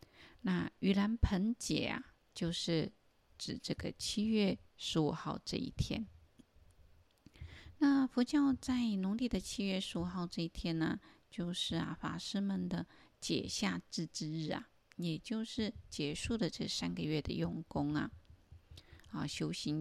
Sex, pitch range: female, 150-225 Hz